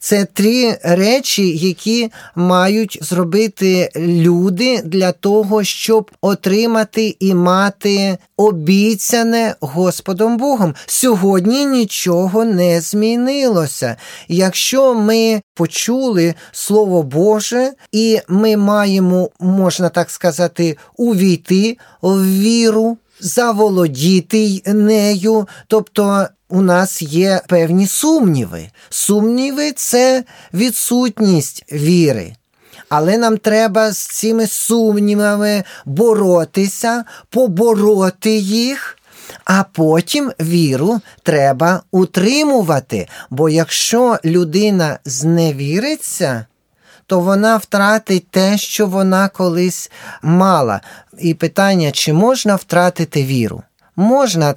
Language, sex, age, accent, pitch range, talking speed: Ukrainian, male, 20-39, native, 170-220 Hz, 90 wpm